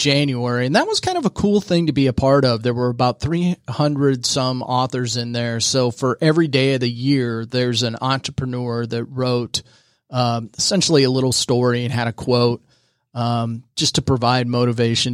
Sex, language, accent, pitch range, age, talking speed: male, English, American, 120-135 Hz, 30-49, 190 wpm